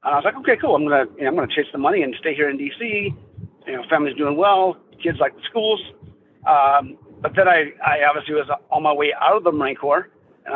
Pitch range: 145-215 Hz